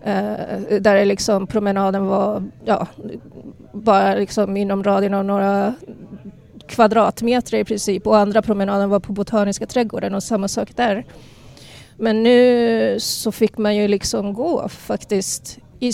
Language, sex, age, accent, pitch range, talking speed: Swedish, female, 30-49, native, 200-230 Hz, 135 wpm